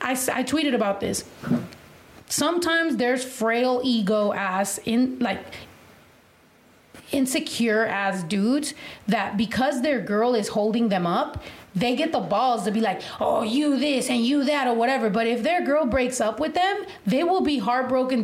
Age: 30-49